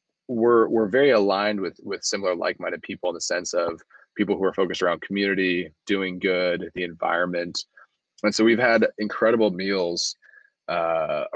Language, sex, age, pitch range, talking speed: English, male, 20-39, 90-110 Hz, 165 wpm